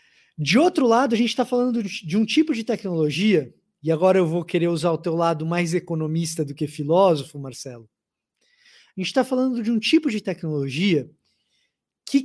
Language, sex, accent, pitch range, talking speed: Portuguese, male, Brazilian, 160-230 Hz, 180 wpm